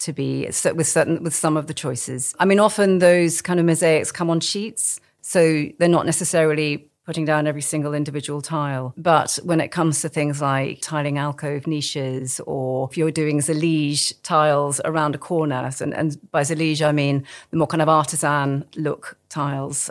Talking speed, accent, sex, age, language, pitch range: 185 wpm, British, female, 40-59, English, 145-170 Hz